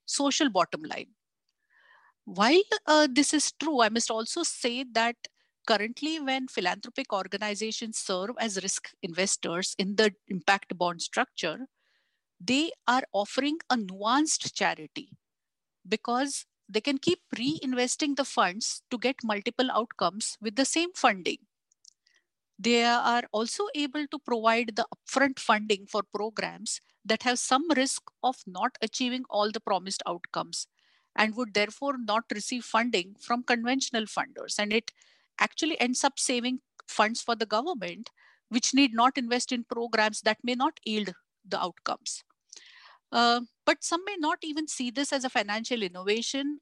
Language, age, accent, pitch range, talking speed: English, 50-69, Indian, 210-270 Hz, 145 wpm